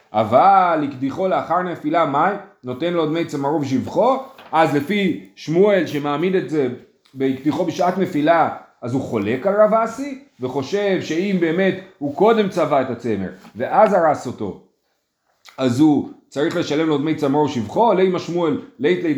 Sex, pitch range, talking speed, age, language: male, 140-195 Hz, 145 wpm, 30-49, Hebrew